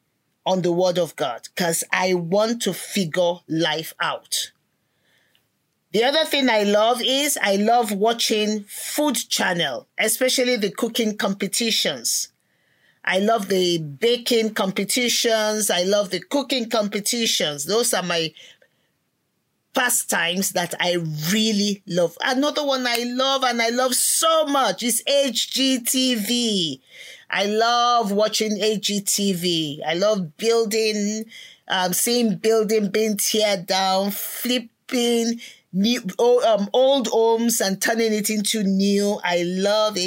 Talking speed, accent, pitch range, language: 120 wpm, Nigerian, 185-235 Hz, English